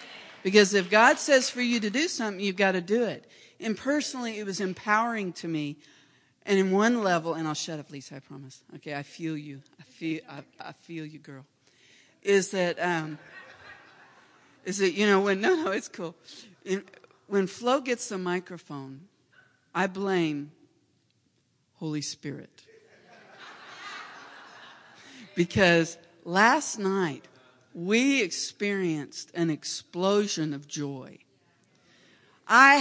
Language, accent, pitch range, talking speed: English, American, 160-215 Hz, 135 wpm